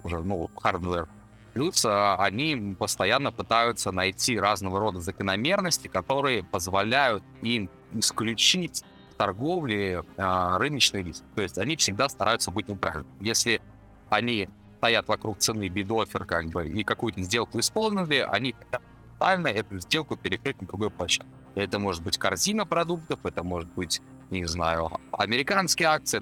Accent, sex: native, male